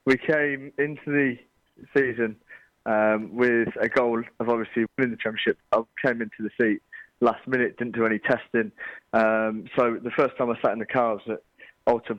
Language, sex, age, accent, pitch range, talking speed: English, male, 20-39, British, 110-130 Hz, 180 wpm